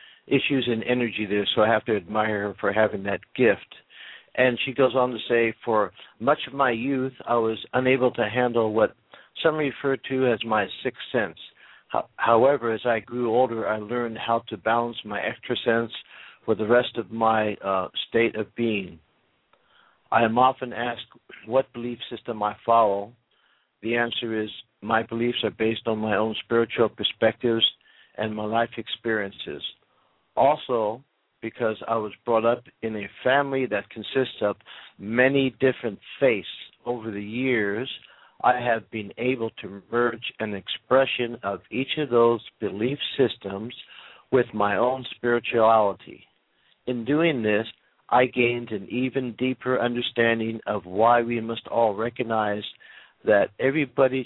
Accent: American